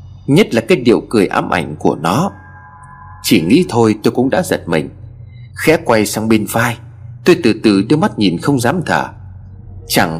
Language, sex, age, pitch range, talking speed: Vietnamese, male, 30-49, 95-125 Hz, 190 wpm